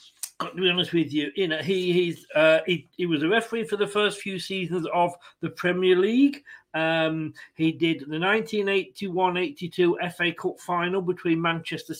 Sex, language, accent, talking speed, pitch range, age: male, English, British, 170 wpm, 155-200 Hz, 40-59